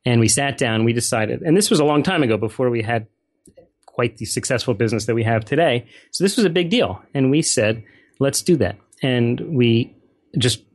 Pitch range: 115-155 Hz